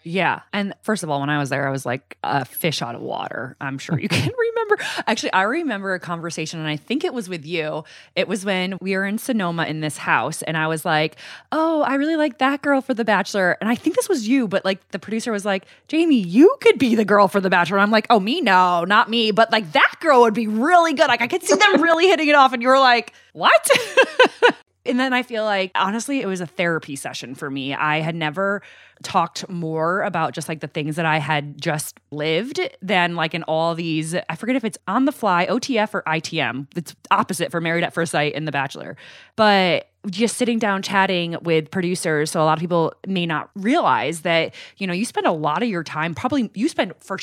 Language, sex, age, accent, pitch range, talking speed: English, female, 20-39, American, 160-230 Hz, 240 wpm